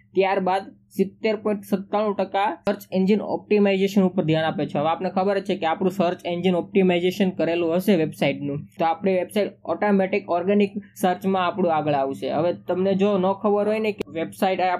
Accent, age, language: native, 20-39, Gujarati